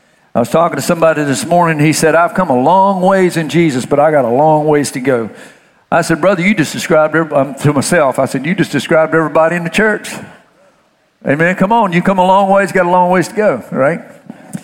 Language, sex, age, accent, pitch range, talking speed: English, male, 50-69, American, 145-190 Hz, 235 wpm